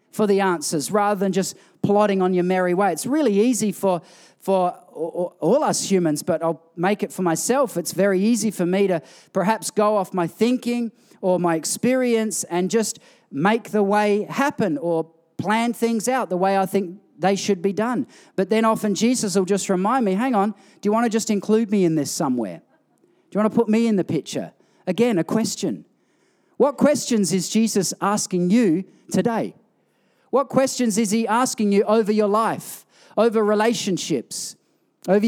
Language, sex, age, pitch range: English, male, 40-59, 180-220 Hz